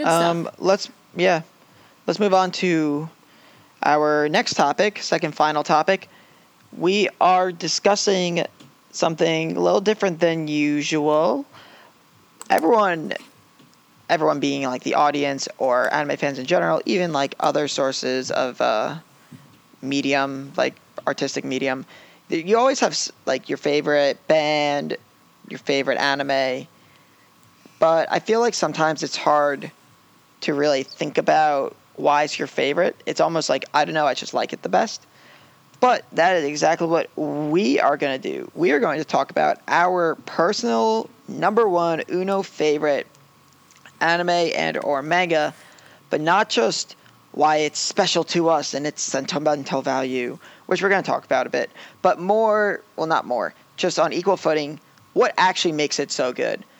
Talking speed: 150 wpm